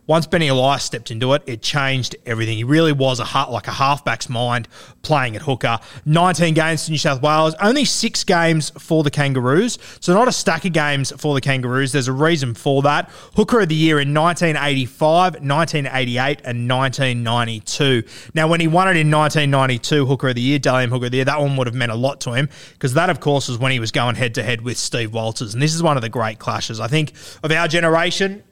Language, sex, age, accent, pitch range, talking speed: English, male, 20-39, Australian, 130-160 Hz, 225 wpm